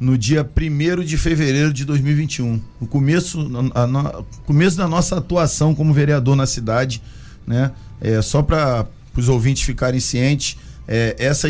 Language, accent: Portuguese, Brazilian